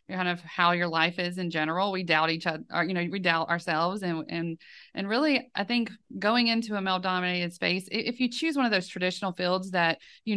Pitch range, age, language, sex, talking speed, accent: 170-215 Hz, 30-49, English, female, 225 wpm, American